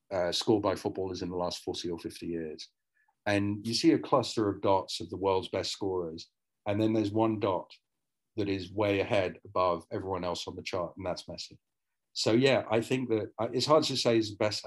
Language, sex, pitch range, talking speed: English, male, 95-115 Hz, 220 wpm